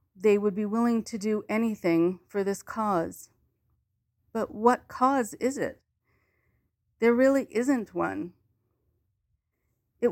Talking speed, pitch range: 120 wpm, 185-225 Hz